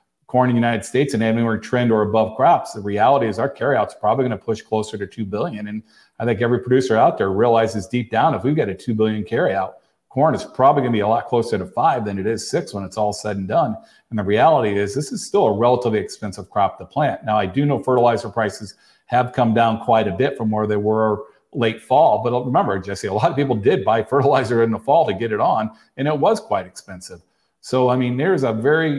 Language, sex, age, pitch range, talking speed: English, male, 40-59, 105-125 Hz, 255 wpm